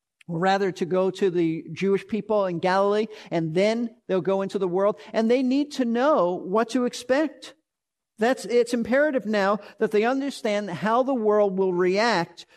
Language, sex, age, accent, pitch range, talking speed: English, male, 50-69, American, 185-225 Hz, 170 wpm